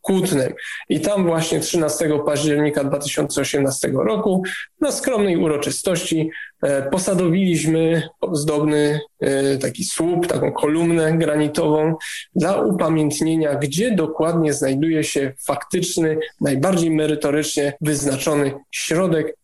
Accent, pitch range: native, 150-180 Hz